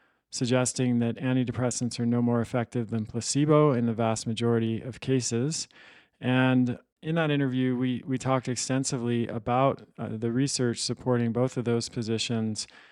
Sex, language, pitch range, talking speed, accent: male, English, 115-130 Hz, 150 wpm, American